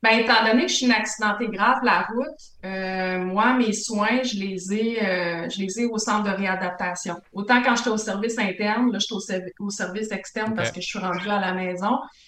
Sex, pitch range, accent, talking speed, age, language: female, 190-240 Hz, Canadian, 230 wpm, 20-39, French